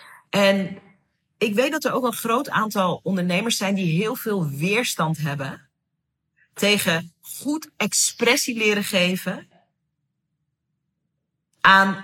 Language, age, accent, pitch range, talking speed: Dutch, 40-59, Dutch, 160-230 Hz, 110 wpm